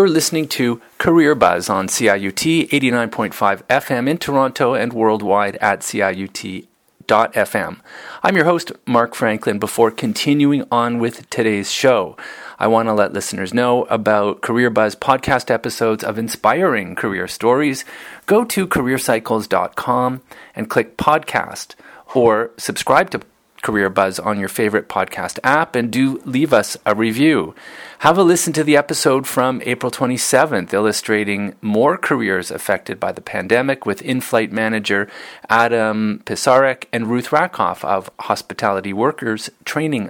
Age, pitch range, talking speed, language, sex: 40-59, 110-140 Hz, 135 wpm, English, male